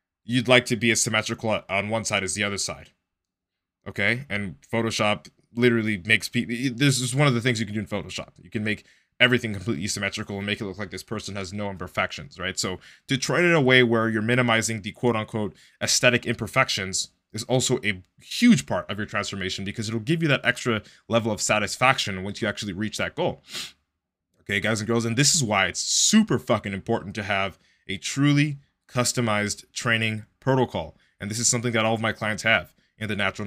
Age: 20-39